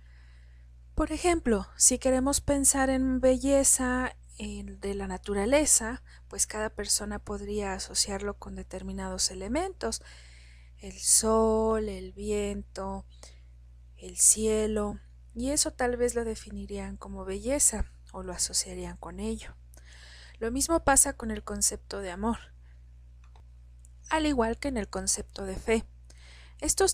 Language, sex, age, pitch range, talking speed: Spanish, female, 40-59, 185-230 Hz, 120 wpm